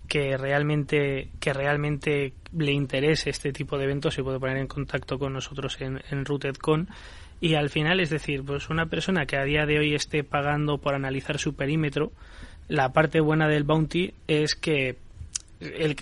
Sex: male